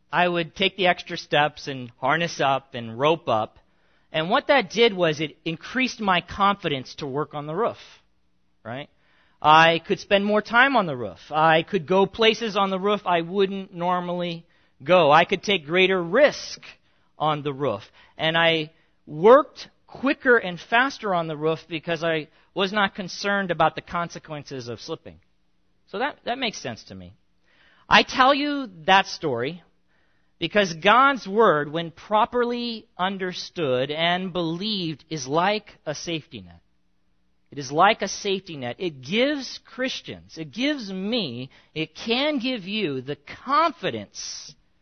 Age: 40-59